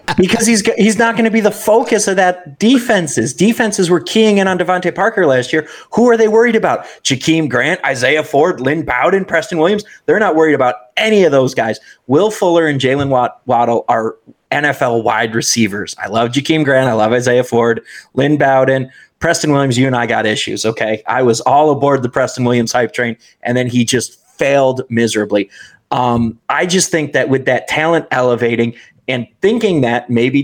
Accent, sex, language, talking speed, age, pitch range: American, male, English, 190 wpm, 30-49, 125-170 Hz